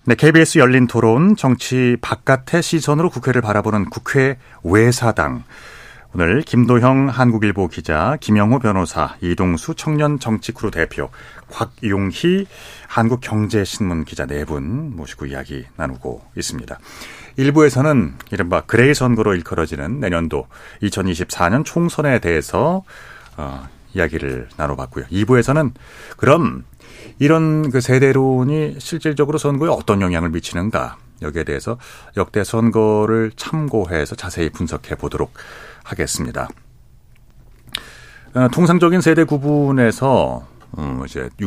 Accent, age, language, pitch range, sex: native, 40-59, Korean, 85-135 Hz, male